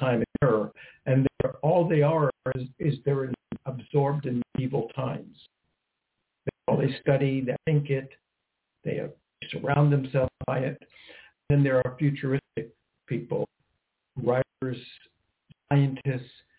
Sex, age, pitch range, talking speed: male, 60-79, 125-145 Hz, 110 wpm